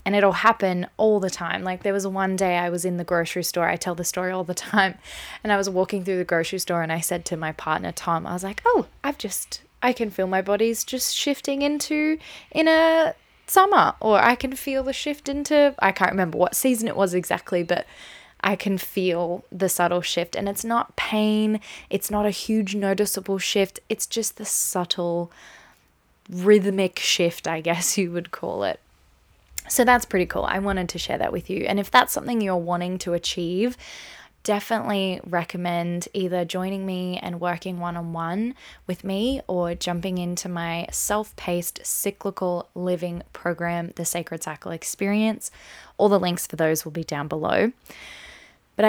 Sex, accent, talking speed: female, Australian, 185 wpm